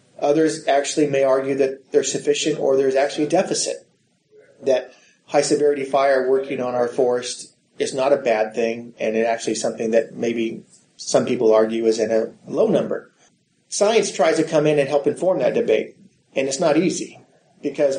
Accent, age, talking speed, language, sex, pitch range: American, 30-49, 175 wpm, English, male, 130-155 Hz